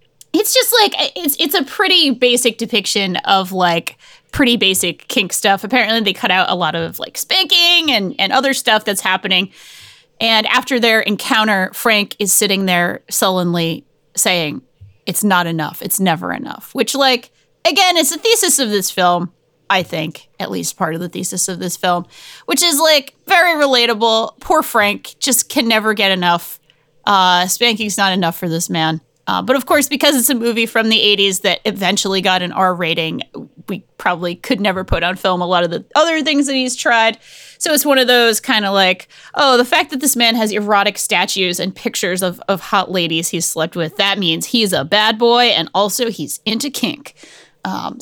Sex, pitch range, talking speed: female, 180-255 Hz, 195 wpm